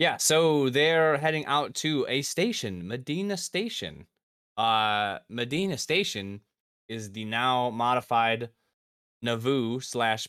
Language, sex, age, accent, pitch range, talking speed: English, male, 20-39, American, 90-125 Hz, 110 wpm